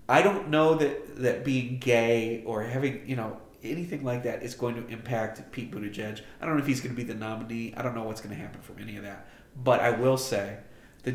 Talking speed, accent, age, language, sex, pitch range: 250 wpm, American, 30-49, English, male, 110-130 Hz